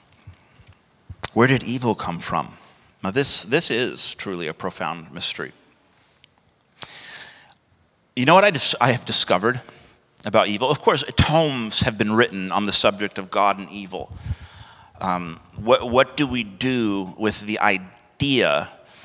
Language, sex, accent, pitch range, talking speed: English, male, American, 100-125 Hz, 140 wpm